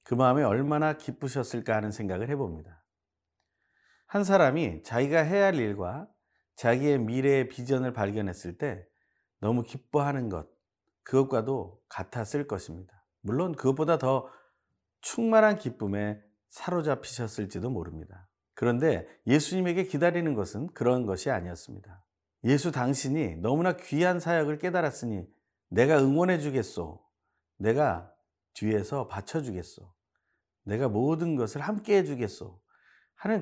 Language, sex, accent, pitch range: Korean, male, native, 100-155 Hz